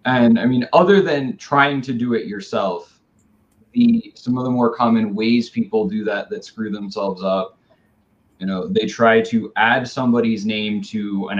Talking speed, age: 180 wpm, 20-39